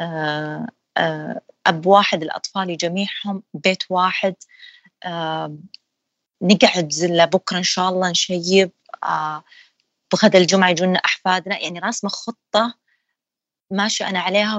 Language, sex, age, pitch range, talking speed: Arabic, female, 30-49, 170-205 Hz, 95 wpm